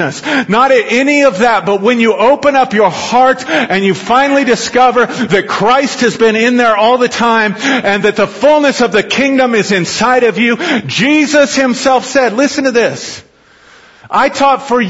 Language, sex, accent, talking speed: English, male, American, 180 wpm